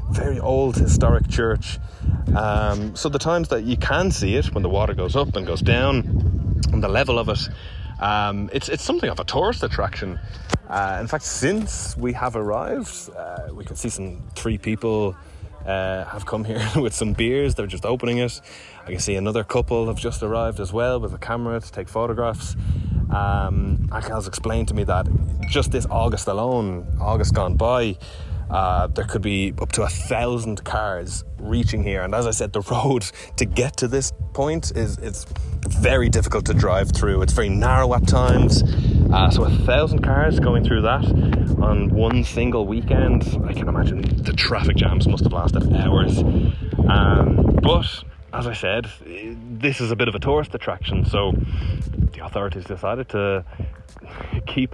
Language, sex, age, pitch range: English, male, 20-39, 90-115 Hz